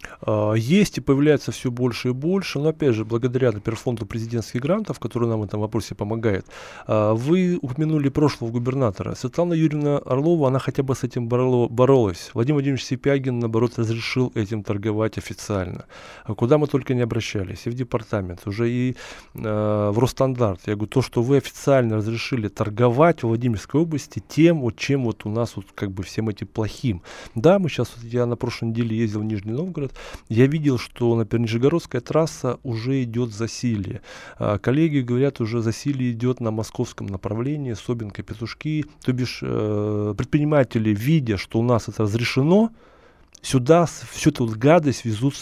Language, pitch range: Russian, 110-140 Hz